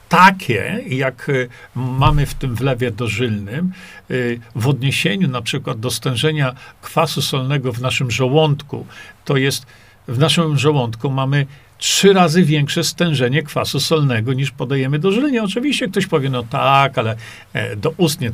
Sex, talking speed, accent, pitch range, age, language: male, 140 wpm, native, 120-160 Hz, 50-69, Polish